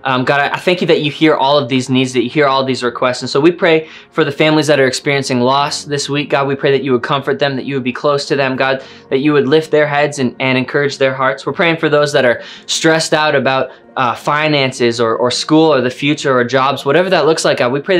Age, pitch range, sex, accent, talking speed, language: 20-39, 130-155 Hz, male, American, 285 wpm, English